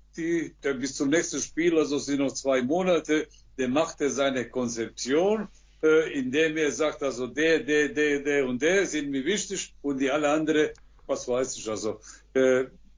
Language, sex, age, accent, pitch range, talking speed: German, male, 60-79, German, 140-190 Hz, 180 wpm